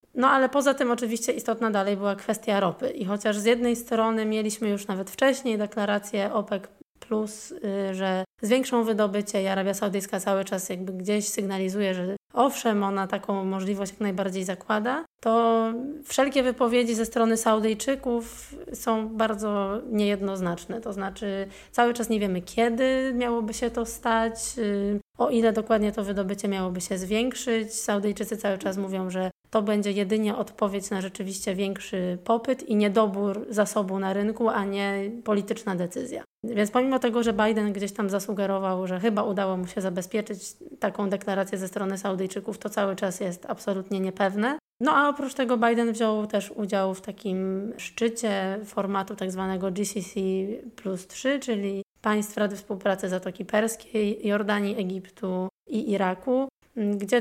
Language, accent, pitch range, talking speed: Polish, native, 195-225 Hz, 150 wpm